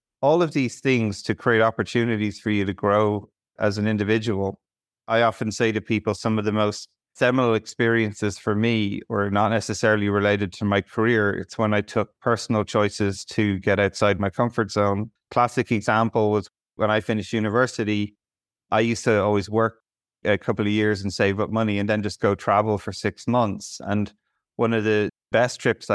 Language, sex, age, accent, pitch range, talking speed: English, male, 30-49, Irish, 100-115 Hz, 185 wpm